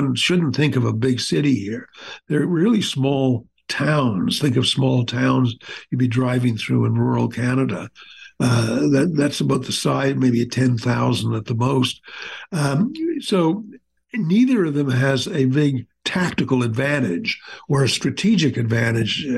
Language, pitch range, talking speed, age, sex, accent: English, 125-160 Hz, 150 wpm, 60-79, male, American